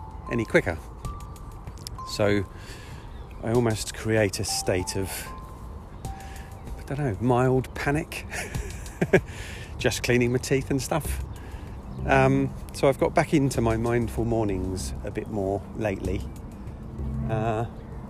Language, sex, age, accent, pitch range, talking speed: English, male, 40-59, British, 75-120 Hz, 115 wpm